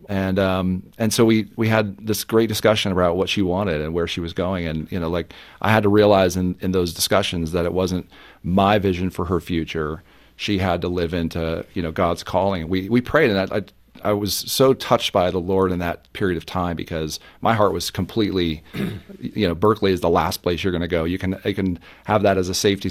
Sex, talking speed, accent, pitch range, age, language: male, 240 wpm, American, 85-105 Hz, 40-59, English